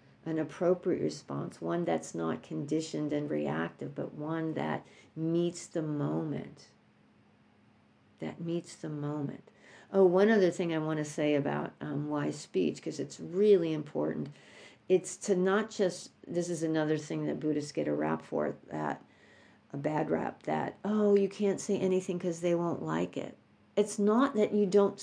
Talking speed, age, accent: 165 wpm, 50-69, American